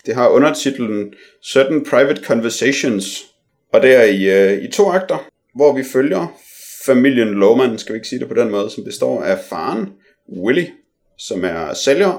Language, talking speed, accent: Danish, 165 wpm, native